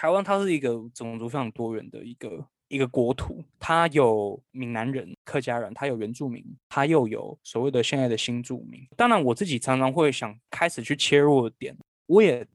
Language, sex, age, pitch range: Chinese, male, 20-39, 120-155 Hz